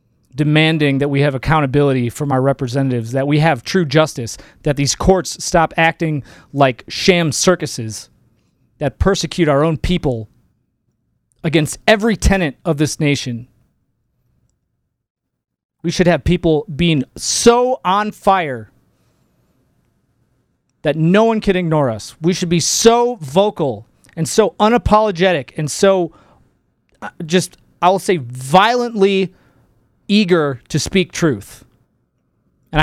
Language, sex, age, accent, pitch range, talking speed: English, male, 30-49, American, 135-175 Hz, 120 wpm